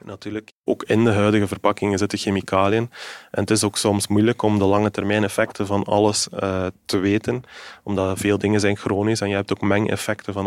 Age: 20-39